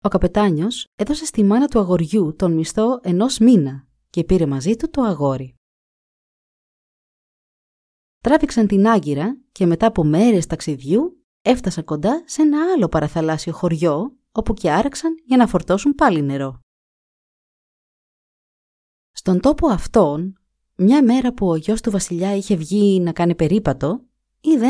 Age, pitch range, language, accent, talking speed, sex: 20-39, 155-235 Hz, Greek, native, 135 wpm, female